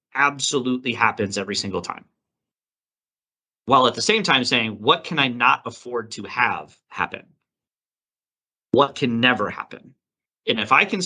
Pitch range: 110-140 Hz